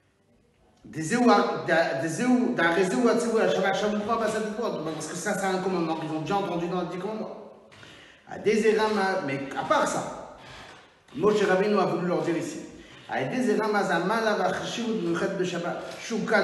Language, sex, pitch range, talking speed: French, male, 190-255 Hz, 95 wpm